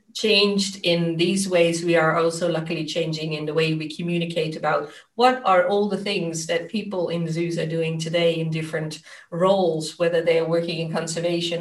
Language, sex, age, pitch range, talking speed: English, female, 30-49, 160-185 Hz, 185 wpm